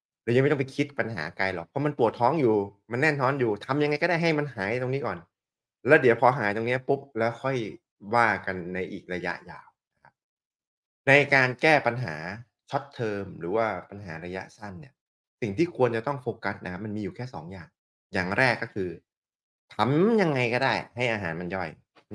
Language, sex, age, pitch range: Thai, male, 20-39, 95-125 Hz